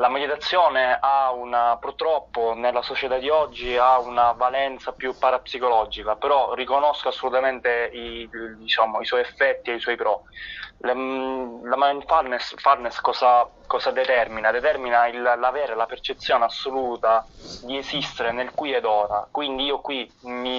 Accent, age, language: native, 20-39, Italian